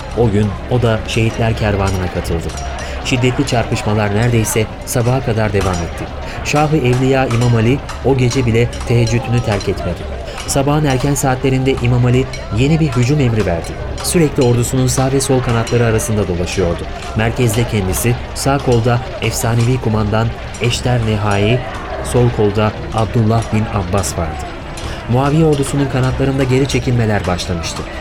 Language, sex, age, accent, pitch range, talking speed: Turkish, male, 30-49, native, 100-125 Hz, 135 wpm